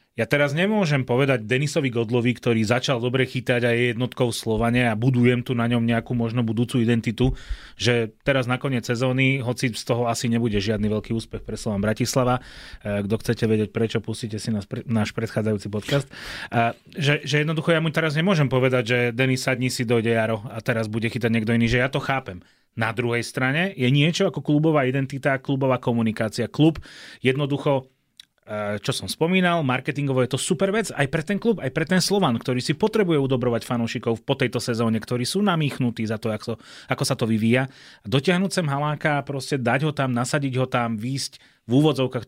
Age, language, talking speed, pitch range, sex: 30-49, Slovak, 190 wpm, 115-140 Hz, male